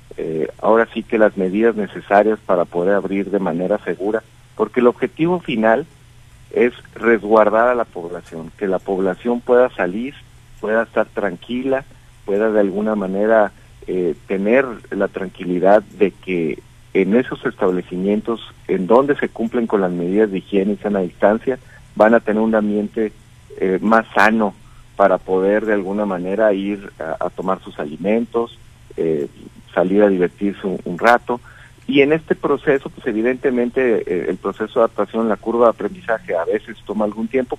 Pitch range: 100-120 Hz